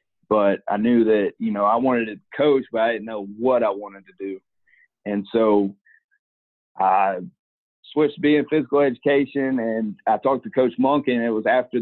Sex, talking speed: male, 190 wpm